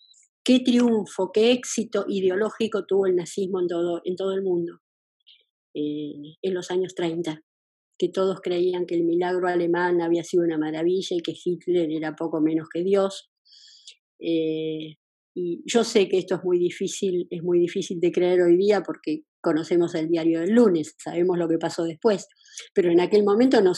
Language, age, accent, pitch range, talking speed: Spanish, 20-39, Argentinian, 170-225 Hz, 175 wpm